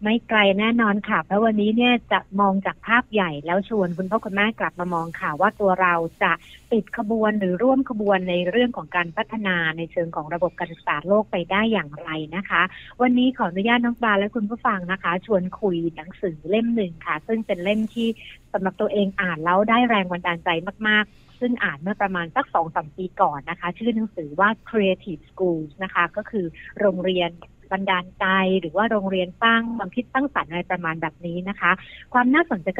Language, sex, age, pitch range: Thai, female, 60-79, 175-225 Hz